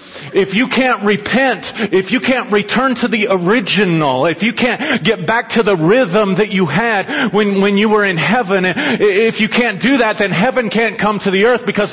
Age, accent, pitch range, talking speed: 40-59, American, 205-250 Hz, 205 wpm